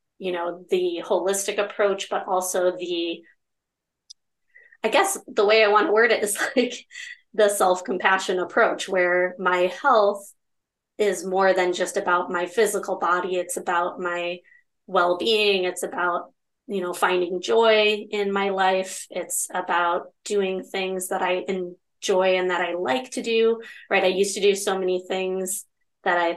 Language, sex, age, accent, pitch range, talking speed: English, female, 30-49, American, 180-205 Hz, 155 wpm